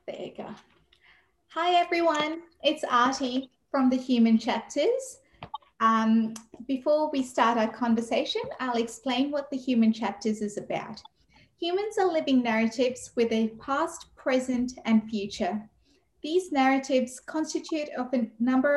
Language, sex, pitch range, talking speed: English, female, 225-280 Hz, 130 wpm